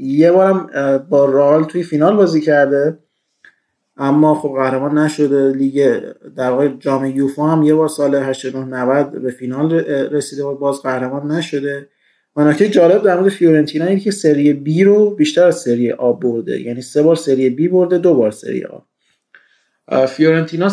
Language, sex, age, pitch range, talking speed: Persian, male, 30-49, 130-155 Hz, 160 wpm